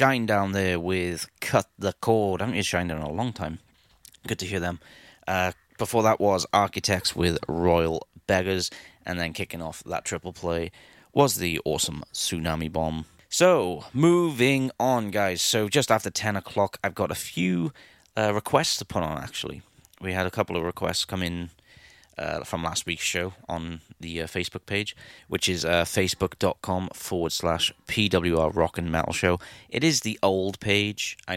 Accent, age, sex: British, 30-49, male